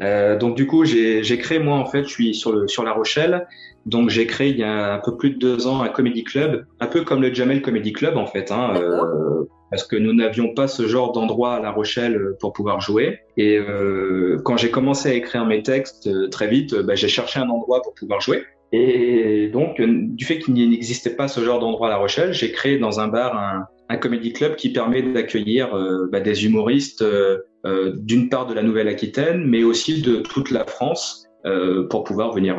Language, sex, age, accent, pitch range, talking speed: French, male, 20-39, French, 105-125 Hz, 225 wpm